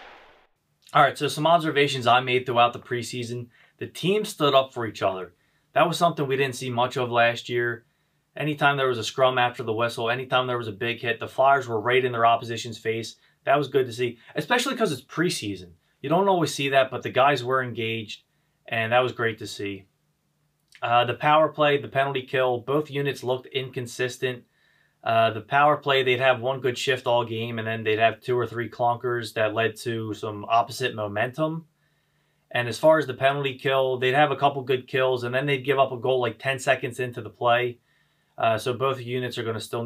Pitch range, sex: 115-140 Hz, male